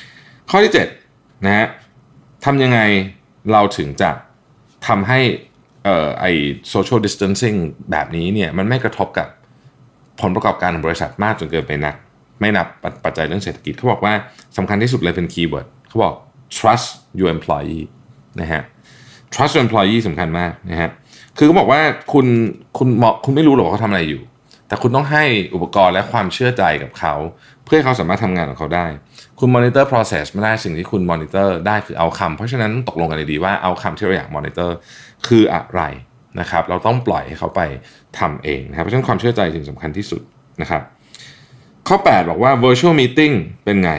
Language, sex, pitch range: Thai, male, 85-125 Hz